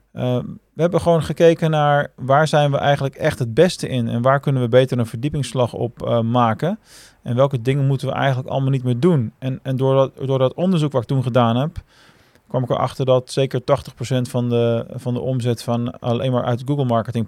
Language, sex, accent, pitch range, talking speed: Dutch, male, Dutch, 120-140 Hz, 210 wpm